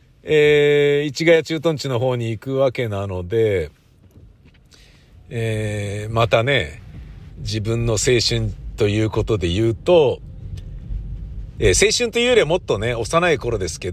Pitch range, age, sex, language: 115-160 Hz, 50-69, male, Japanese